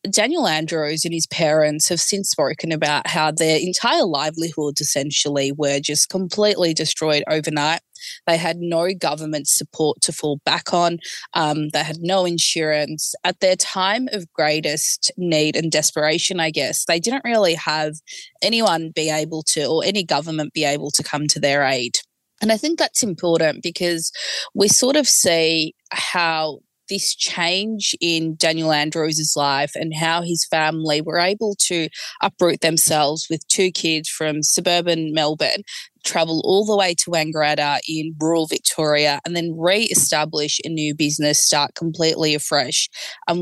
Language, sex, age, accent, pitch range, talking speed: English, female, 20-39, Australian, 150-175 Hz, 155 wpm